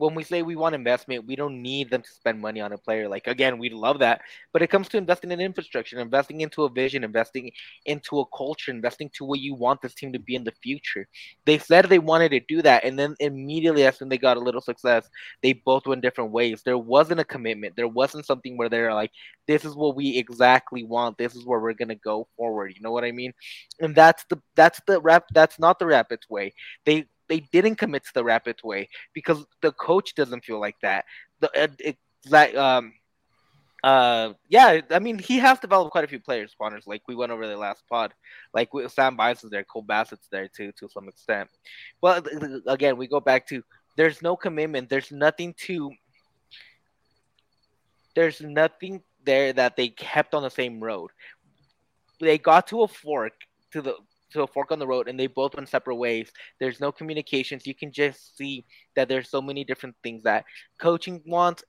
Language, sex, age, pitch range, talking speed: English, male, 20-39, 120-155 Hz, 215 wpm